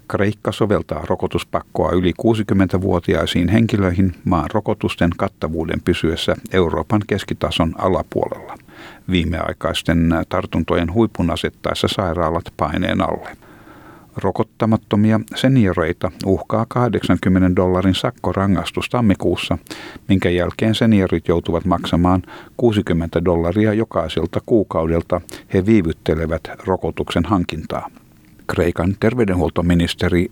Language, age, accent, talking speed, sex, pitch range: Finnish, 60-79, native, 85 wpm, male, 85-105 Hz